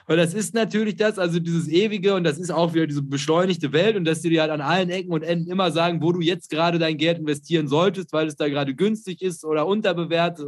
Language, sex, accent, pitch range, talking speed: German, male, German, 160-195 Hz, 250 wpm